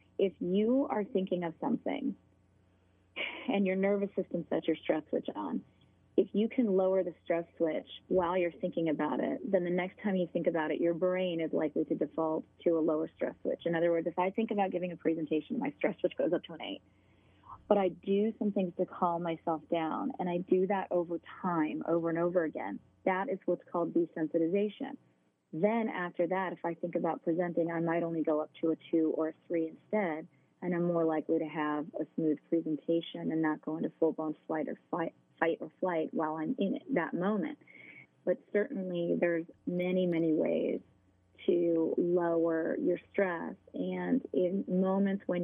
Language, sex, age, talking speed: English, female, 30-49, 195 wpm